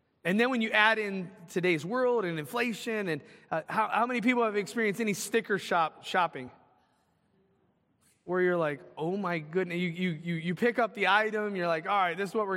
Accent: American